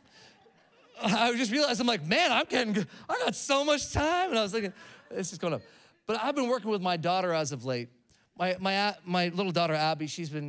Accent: American